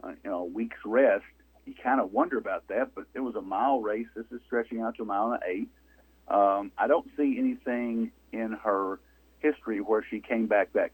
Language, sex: English, male